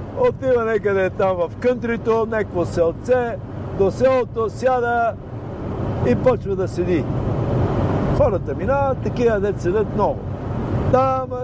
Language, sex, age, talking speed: Bulgarian, male, 60-79, 110 wpm